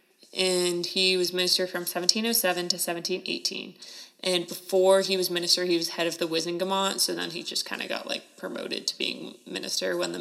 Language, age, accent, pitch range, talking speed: English, 20-39, American, 175-195 Hz, 210 wpm